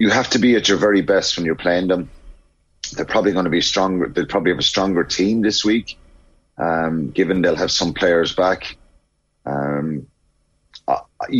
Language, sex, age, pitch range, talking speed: English, male, 30-49, 80-105 Hz, 185 wpm